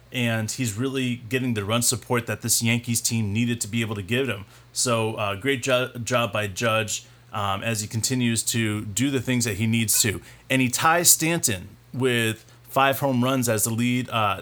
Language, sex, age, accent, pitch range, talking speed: English, male, 30-49, American, 115-130 Hz, 205 wpm